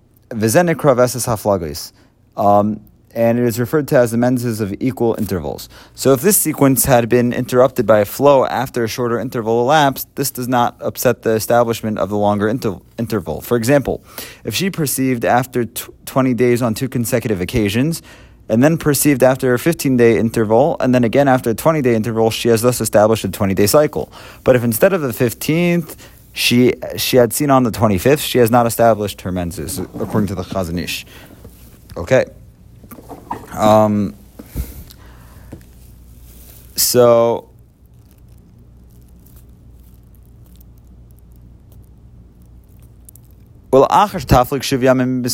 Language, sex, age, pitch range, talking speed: English, male, 30-49, 105-130 Hz, 130 wpm